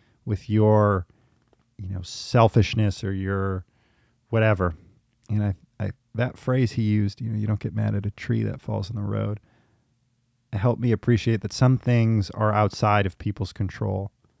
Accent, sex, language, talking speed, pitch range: American, male, English, 170 wpm, 105-125 Hz